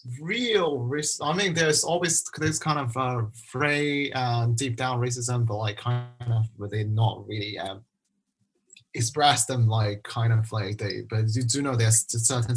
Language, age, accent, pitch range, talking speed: English, 20-39, British, 105-120 Hz, 190 wpm